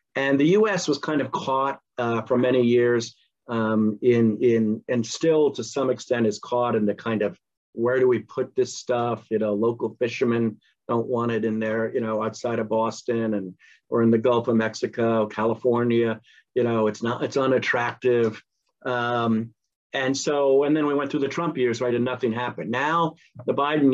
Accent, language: American, English